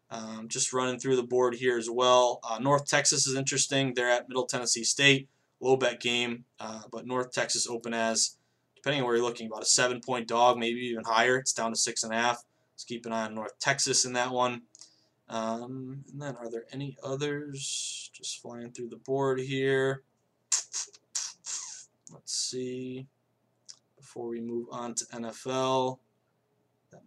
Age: 20-39